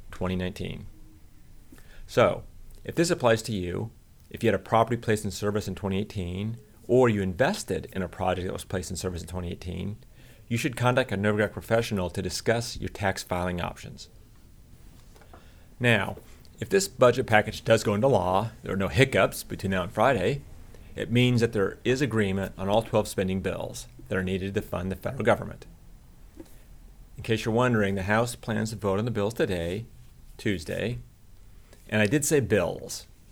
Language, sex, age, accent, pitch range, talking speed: English, male, 40-59, American, 95-115 Hz, 175 wpm